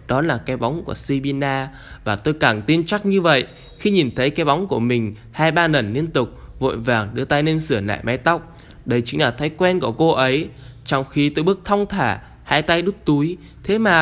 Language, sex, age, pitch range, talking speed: Vietnamese, male, 10-29, 125-170 Hz, 230 wpm